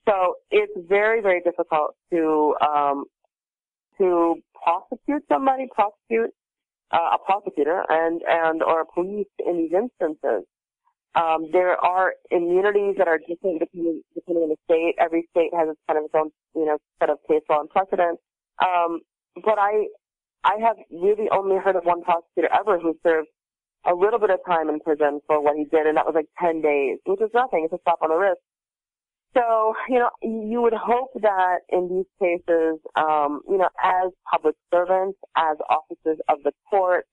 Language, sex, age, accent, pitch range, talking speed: English, female, 40-59, American, 155-195 Hz, 180 wpm